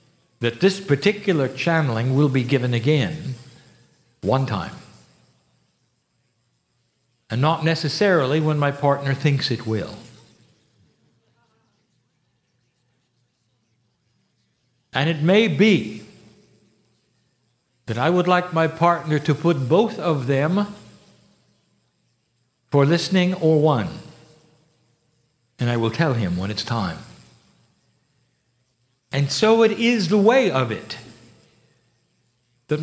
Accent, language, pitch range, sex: American, English, 125-170 Hz, male